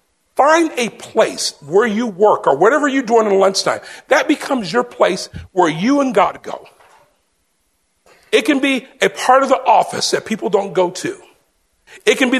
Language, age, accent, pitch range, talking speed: English, 50-69, American, 155-245 Hz, 180 wpm